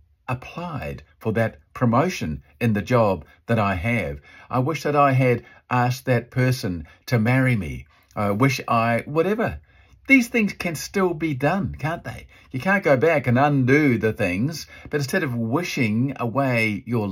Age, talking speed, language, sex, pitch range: 50-69, 165 wpm, English, male, 115-165 Hz